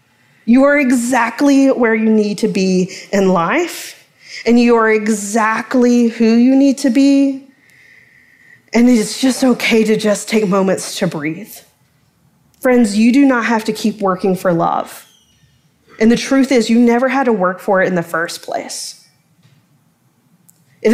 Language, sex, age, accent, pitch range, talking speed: English, female, 20-39, American, 190-245 Hz, 160 wpm